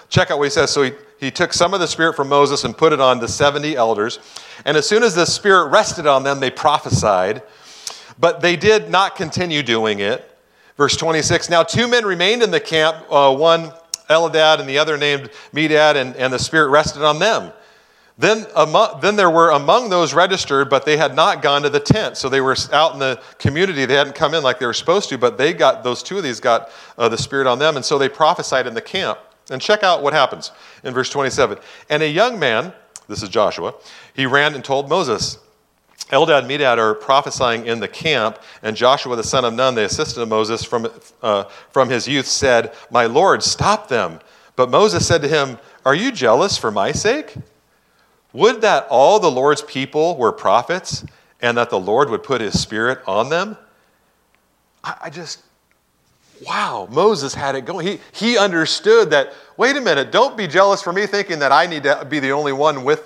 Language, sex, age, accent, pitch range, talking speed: English, male, 40-59, American, 135-170 Hz, 210 wpm